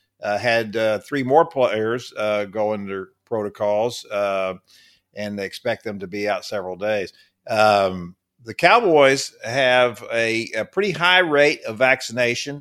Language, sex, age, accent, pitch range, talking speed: English, male, 50-69, American, 105-130 Hz, 150 wpm